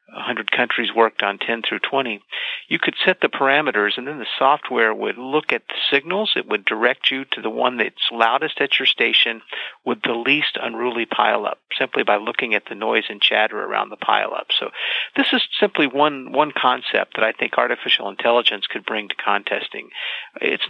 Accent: American